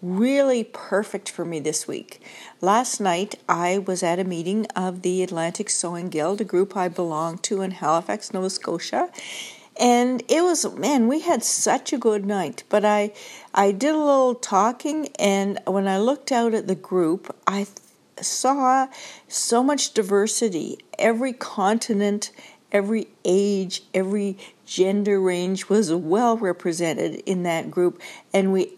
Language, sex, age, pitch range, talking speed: English, female, 60-79, 185-240 Hz, 150 wpm